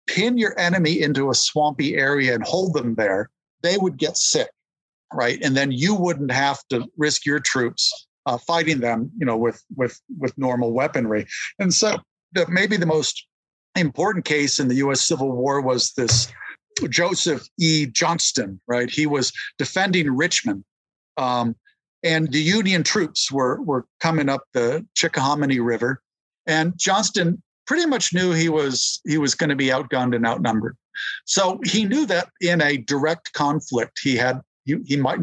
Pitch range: 135-175 Hz